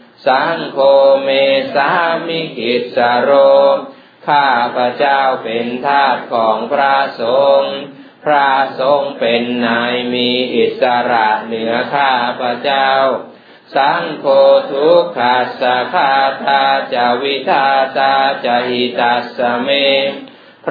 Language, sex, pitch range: Thai, male, 125-140 Hz